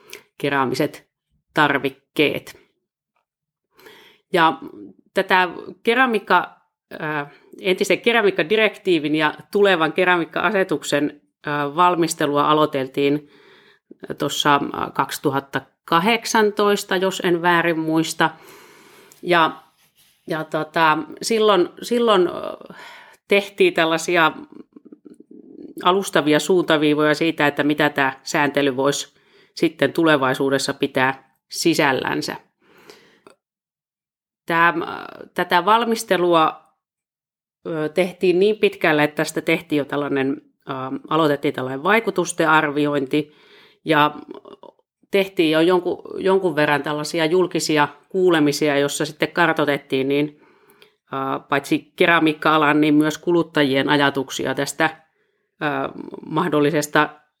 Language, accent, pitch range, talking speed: Finnish, native, 145-190 Hz, 75 wpm